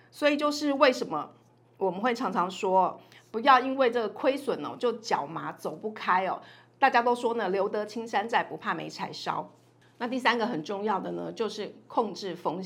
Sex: female